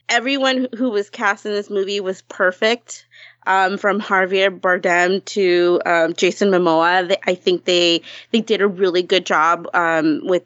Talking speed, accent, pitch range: 165 wpm, American, 175-215 Hz